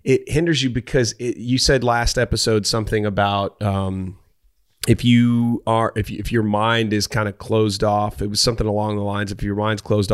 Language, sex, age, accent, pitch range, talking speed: English, male, 30-49, American, 100-120 Hz, 205 wpm